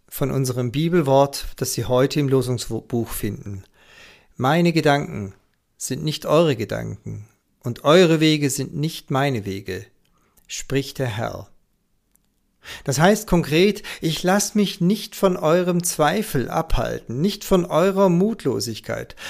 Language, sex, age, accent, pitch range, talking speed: German, male, 50-69, German, 130-175 Hz, 125 wpm